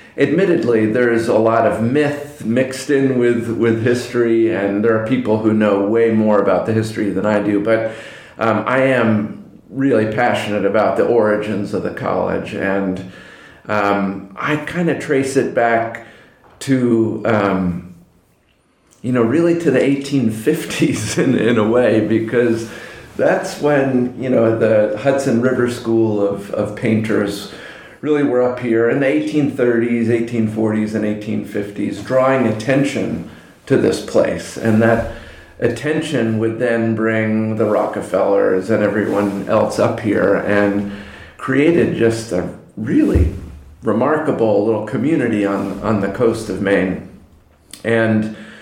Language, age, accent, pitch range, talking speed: English, 40-59, American, 105-120 Hz, 140 wpm